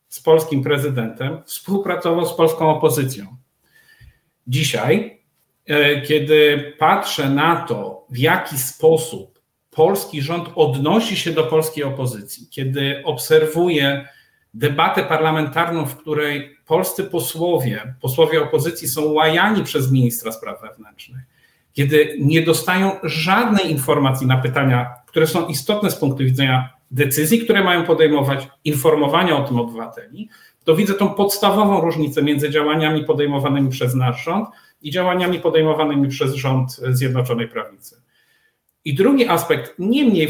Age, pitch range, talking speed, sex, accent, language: 50-69, 140-180 Hz, 120 wpm, male, native, Polish